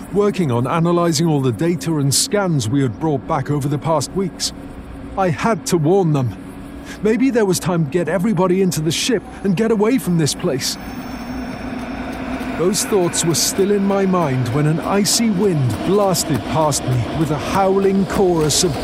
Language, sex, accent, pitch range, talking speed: English, male, British, 125-185 Hz, 180 wpm